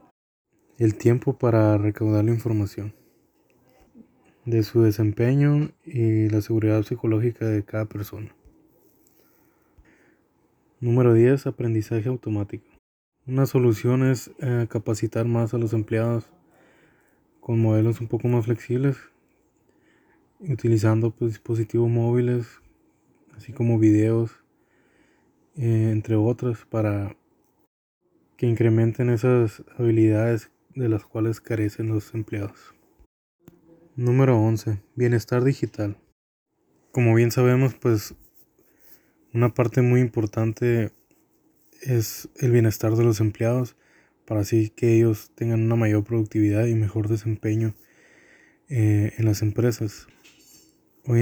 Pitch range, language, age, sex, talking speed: 110-120 Hz, Spanish, 20-39, male, 105 wpm